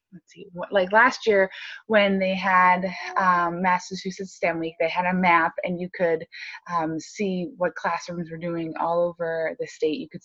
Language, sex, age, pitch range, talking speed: English, female, 20-39, 170-205 Hz, 180 wpm